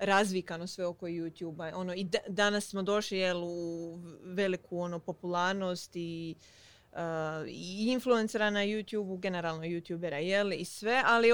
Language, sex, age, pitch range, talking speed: Croatian, female, 20-39, 175-215 Hz, 140 wpm